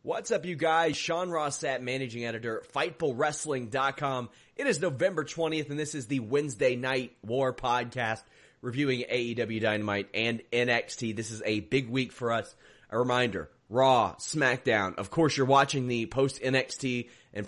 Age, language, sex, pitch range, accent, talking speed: 30-49, English, male, 120-155 Hz, American, 150 wpm